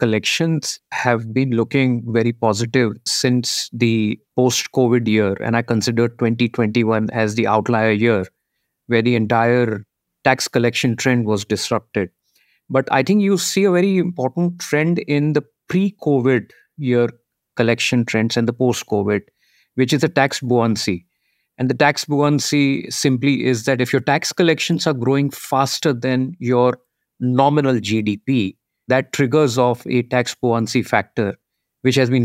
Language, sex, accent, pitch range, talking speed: English, male, Indian, 115-140 Hz, 150 wpm